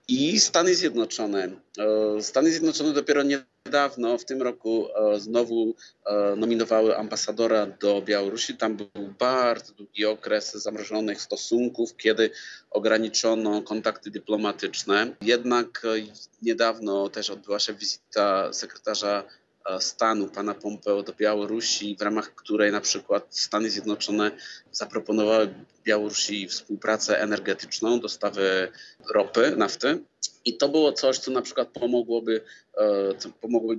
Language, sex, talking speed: Polish, male, 105 wpm